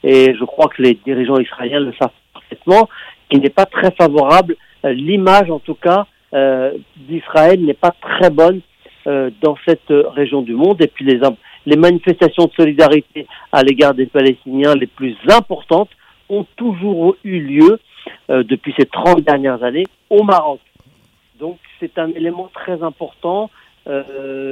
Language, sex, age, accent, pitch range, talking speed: French, male, 50-69, French, 130-170 Hz, 155 wpm